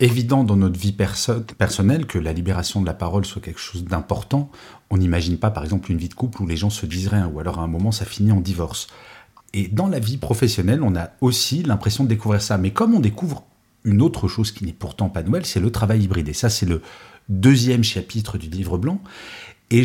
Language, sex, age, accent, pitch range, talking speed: French, male, 40-59, French, 100-130 Hz, 235 wpm